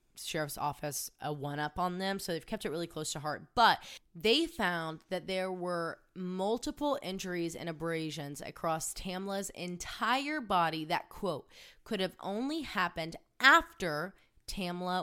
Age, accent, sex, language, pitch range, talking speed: 20-39, American, female, English, 160-210 Hz, 150 wpm